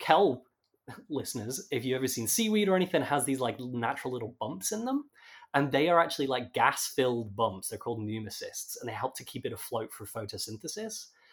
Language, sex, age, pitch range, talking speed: English, male, 20-39, 110-140 Hz, 190 wpm